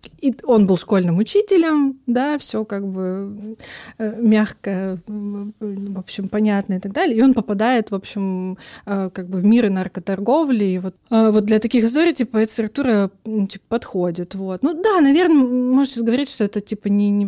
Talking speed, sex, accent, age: 170 wpm, female, native, 20-39